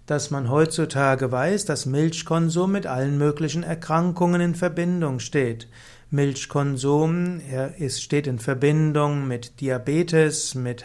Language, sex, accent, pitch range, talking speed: German, male, German, 135-165 Hz, 120 wpm